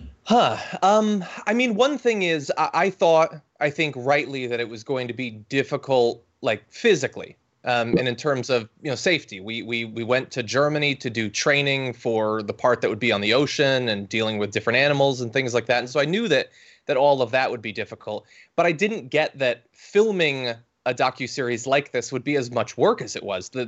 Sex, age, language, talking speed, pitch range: male, 20-39, English, 225 wpm, 120-150 Hz